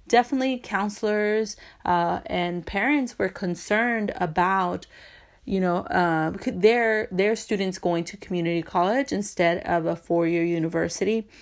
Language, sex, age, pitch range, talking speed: English, female, 30-49, 175-215 Hz, 120 wpm